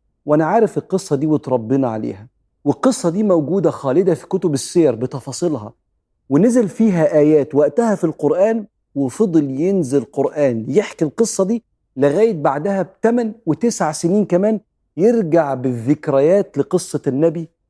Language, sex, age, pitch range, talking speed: Arabic, male, 40-59, 125-170 Hz, 120 wpm